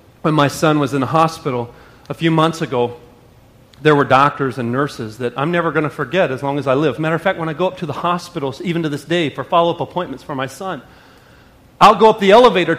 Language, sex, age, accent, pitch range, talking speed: English, male, 40-59, American, 165-275 Hz, 245 wpm